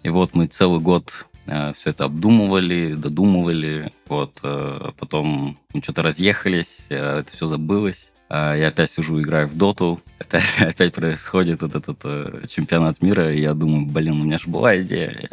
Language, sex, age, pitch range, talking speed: Russian, male, 20-39, 75-85 Hz, 175 wpm